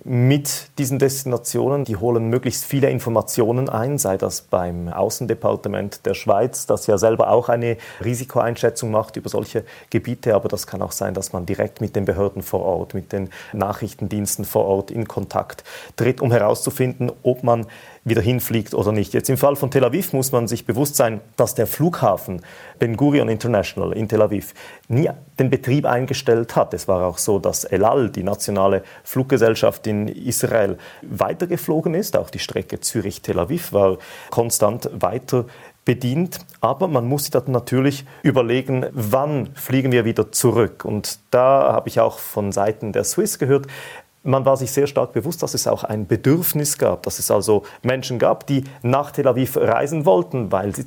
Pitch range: 110-135 Hz